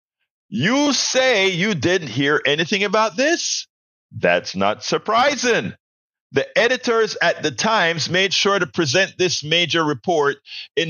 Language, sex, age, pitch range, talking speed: English, male, 50-69, 125-205 Hz, 130 wpm